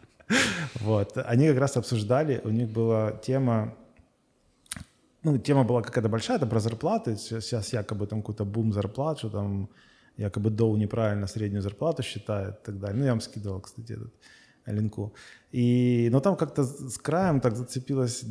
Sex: male